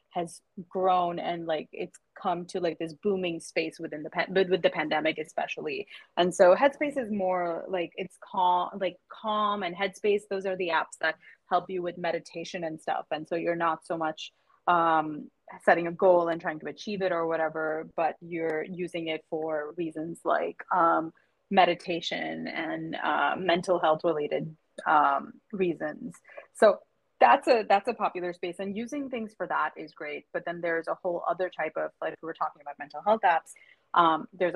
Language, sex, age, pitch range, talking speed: English, female, 20-39, 165-200 Hz, 185 wpm